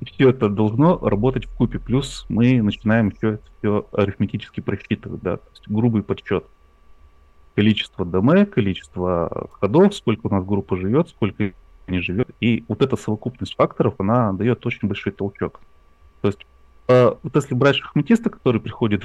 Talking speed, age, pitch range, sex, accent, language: 160 wpm, 30-49, 95-125 Hz, male, native, Russian